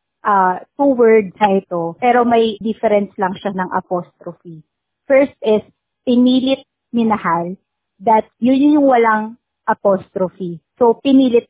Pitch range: 195-245 Hz